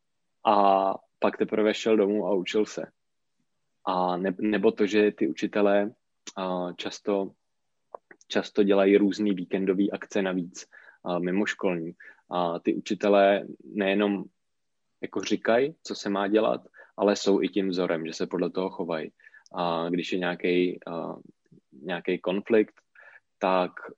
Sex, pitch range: male, 90-105 Hz